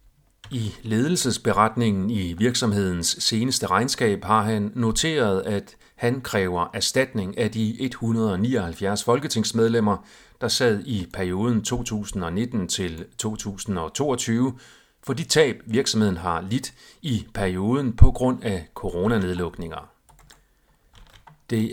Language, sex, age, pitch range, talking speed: Danish, male, 40-59, 95-125 Hz, 95 wpm